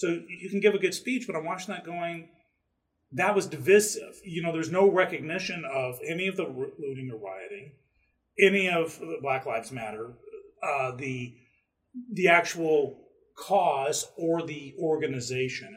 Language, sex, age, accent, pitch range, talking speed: English, male, 40-59, American, 130-195 Hz, 150 wpm